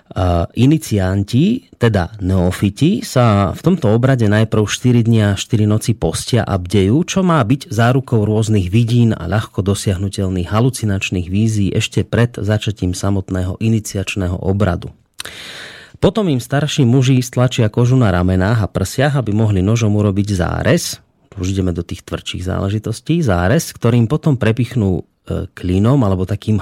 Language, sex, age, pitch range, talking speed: Slovak, male, 30-49, 95-120 Hz, 140 wpm